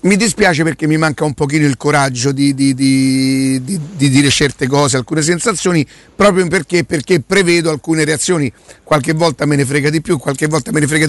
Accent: native